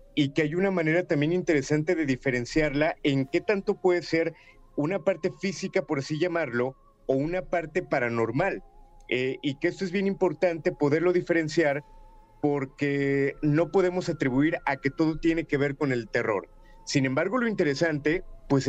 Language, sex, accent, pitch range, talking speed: Spanish, male, Mexican, 145-180 Hz, 165 wpm